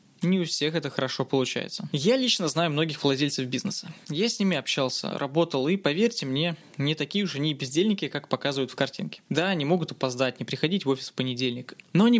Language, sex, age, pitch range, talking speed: Russian, male, 20-39, 135-185 Hz, 200 wpm